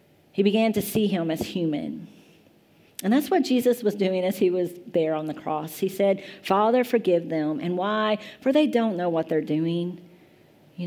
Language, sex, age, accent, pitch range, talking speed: English, female, 40-59, American, 170-230 Hz, 195 wpm